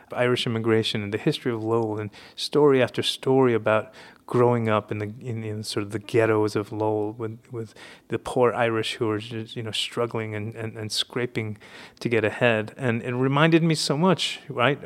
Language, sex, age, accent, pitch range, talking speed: English, male, 30-49, American, 110-130 Hz, 200 wpm